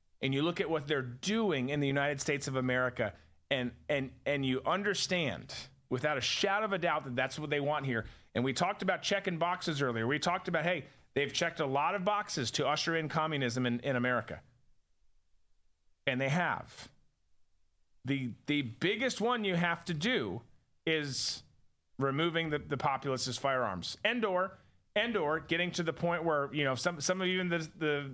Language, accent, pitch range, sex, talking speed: English, American, 130-175 Hz, male, 190 wpm